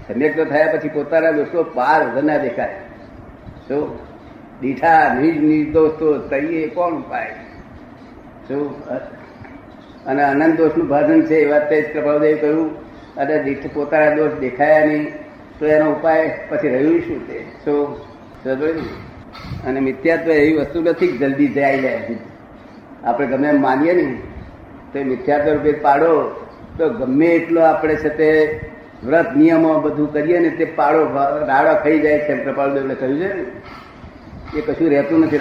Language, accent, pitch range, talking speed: Gujarati, native, 140-160 Hz, 115 wpm